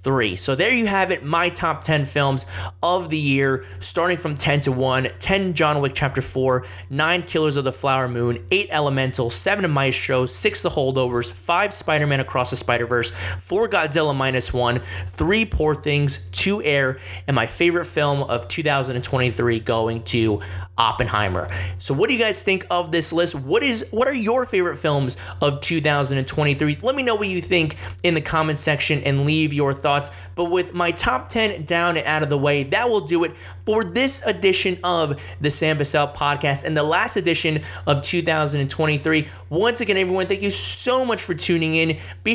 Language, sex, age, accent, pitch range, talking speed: English, male, 30-49, American, 125-180 Hz, 185 wpm